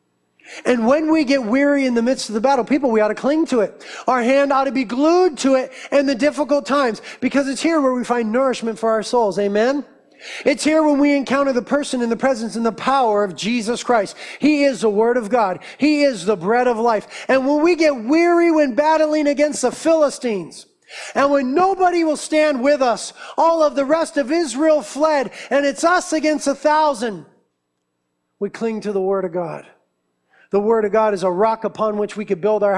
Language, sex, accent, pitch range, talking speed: English, male, American, 200-275 Hz, 220 wpm